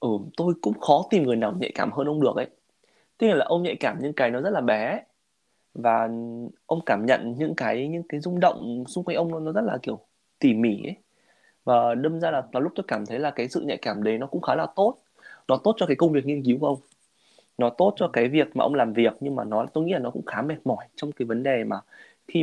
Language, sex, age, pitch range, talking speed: Vietnamese, male, 20-39, 120-160 Hz, 275 wpm